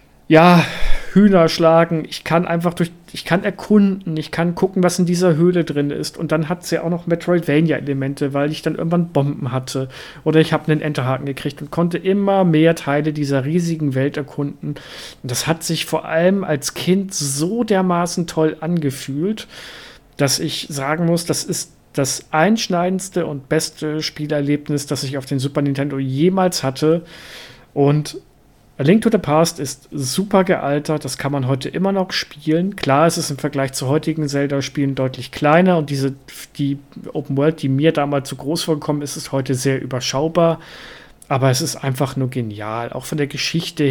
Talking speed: 180 wpm